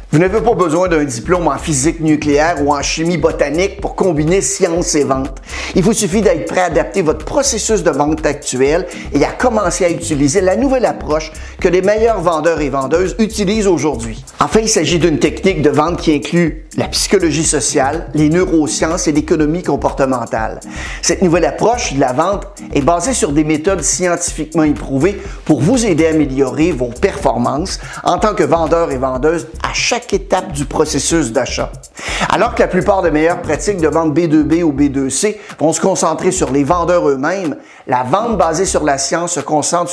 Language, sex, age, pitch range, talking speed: French, male, 50-69, 150-185 Hz, 185 wpm